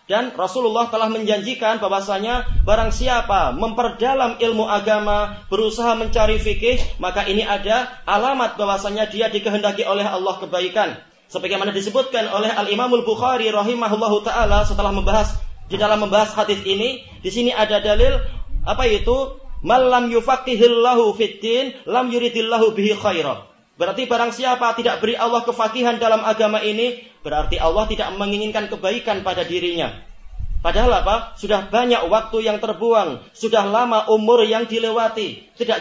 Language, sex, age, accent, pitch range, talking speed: Indonesian, male, 30-49, native, 205-235 Hz, 135 wpm